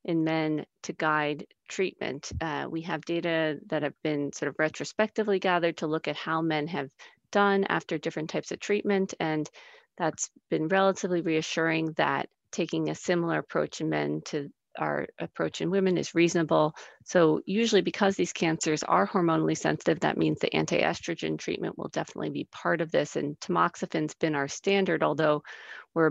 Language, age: English, 40-59